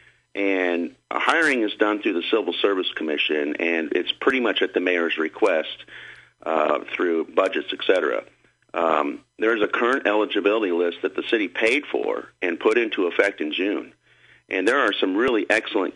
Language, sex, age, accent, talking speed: English, male, 50-69, American, 175 wpm